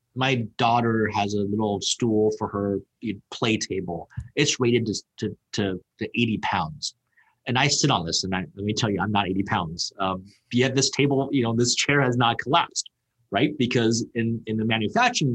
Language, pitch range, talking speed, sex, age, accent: English, 105-135 Hz, 195 wpm, male, 30-49, American